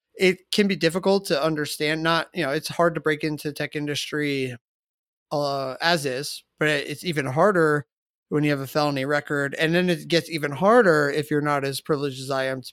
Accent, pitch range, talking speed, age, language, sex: American, 135-160 Hz, 205 wpm, 30-49, English, male